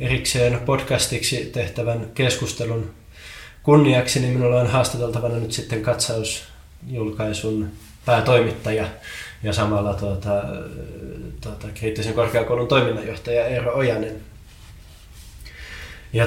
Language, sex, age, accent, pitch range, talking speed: Finnish, male, 20-39, native, 110-125 Hz, 85 wpm